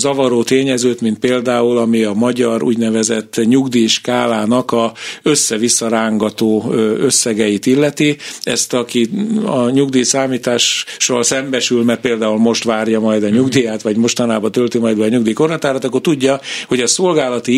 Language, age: Hungarian, 50-69